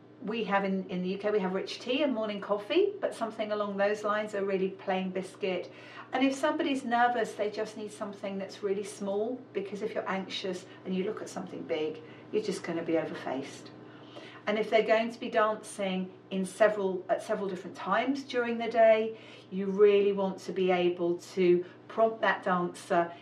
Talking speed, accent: 195 wpm, British